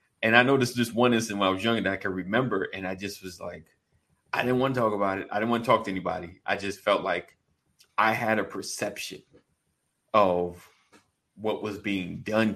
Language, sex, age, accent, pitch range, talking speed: English, male, 30-49, American, 95-120 Hz, 220 wpm